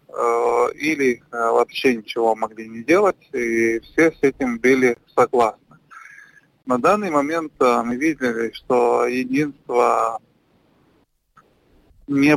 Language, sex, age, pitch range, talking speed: Russian, male, 20-39, 120-160 Hz, 95 wpm